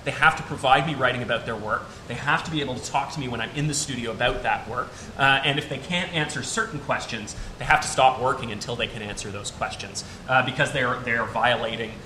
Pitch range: 125-155 Hz